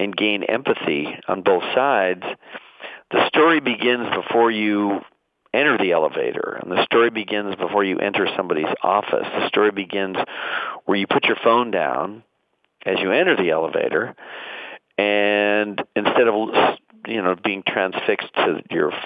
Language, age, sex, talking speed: English, 50-69, male, 145 wpm